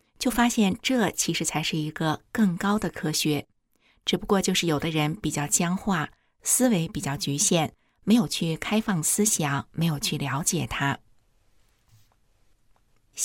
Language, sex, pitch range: Chinese, female, 155-200 Hz